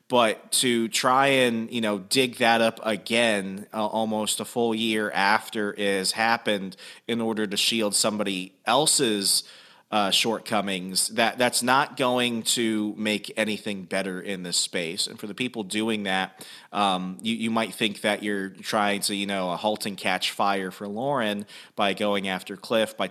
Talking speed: 175 wpm